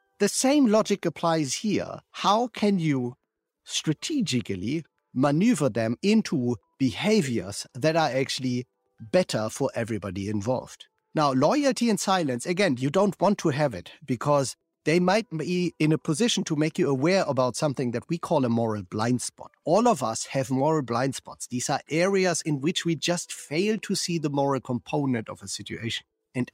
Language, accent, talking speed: Italian, German, 170 wpm